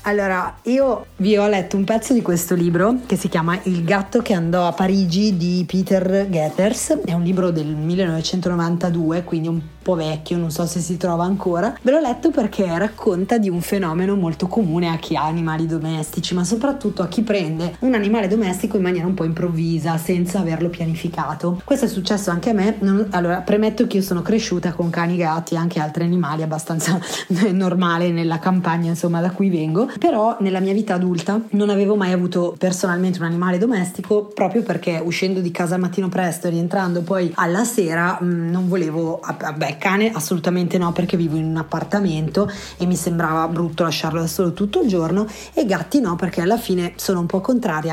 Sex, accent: female, native